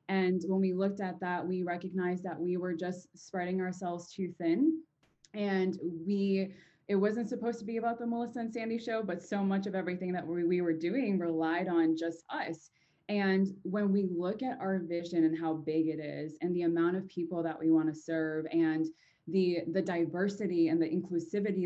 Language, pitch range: English, 165-195 Hz